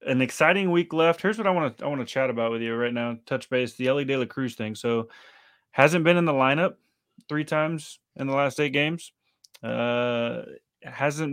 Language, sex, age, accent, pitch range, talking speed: English, male, 30-49, American, 120-140 Hz, 215 wpm